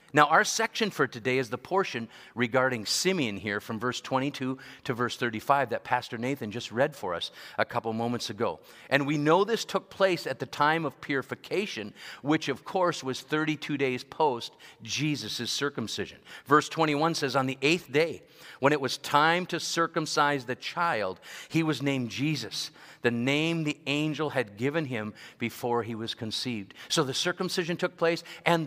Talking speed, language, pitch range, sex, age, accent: 175 wpm, English, 130-165 Hz, male, 50-69, American